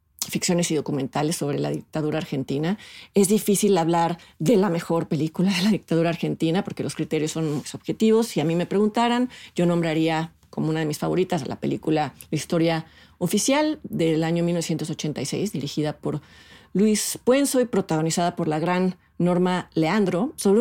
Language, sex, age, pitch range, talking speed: Spanish, female, 40-59, 160-200 Hz, 165 wpm